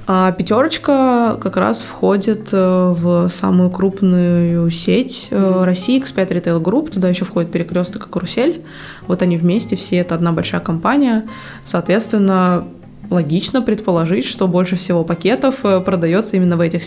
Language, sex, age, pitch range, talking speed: Russian, female, 20-39, 170-205 Hz, 130 wpm